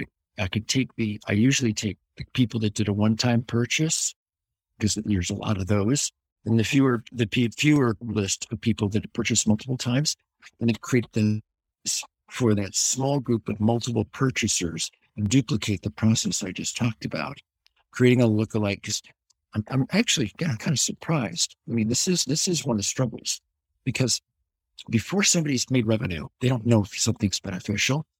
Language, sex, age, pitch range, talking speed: English, male, 60-79, 105-130 Hz, 180 wpm